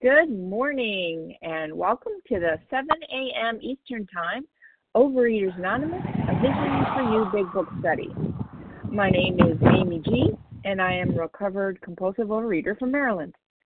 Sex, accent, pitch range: female, American, 180-245 Hz